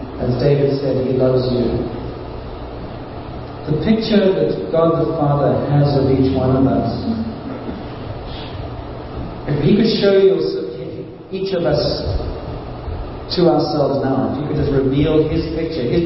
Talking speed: 140 wpm